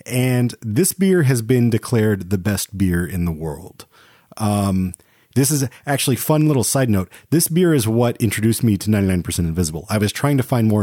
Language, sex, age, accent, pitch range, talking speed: English, male, 30-49, American, 95-125 Hz, 195 wpm